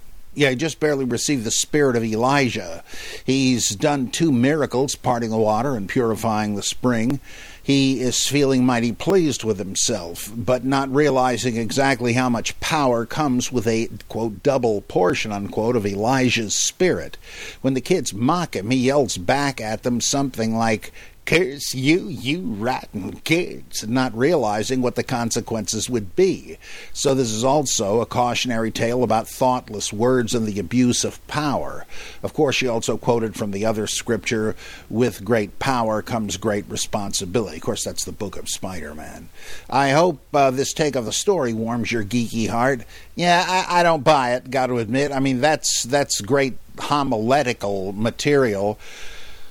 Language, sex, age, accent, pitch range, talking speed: English, male, 50-69, American, 110-135 Hz, 160 wpm